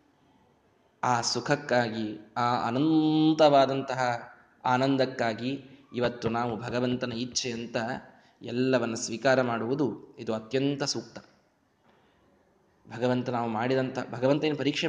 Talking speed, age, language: 90 wpm, 20-39, Kannada